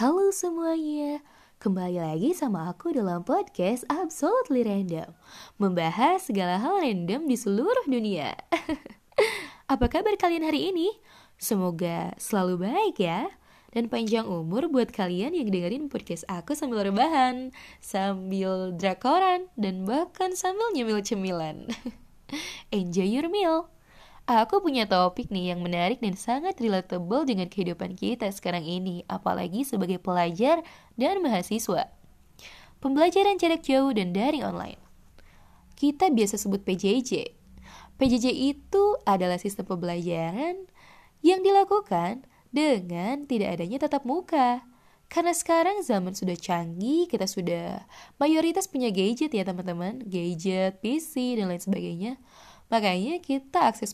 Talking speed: 120 wpm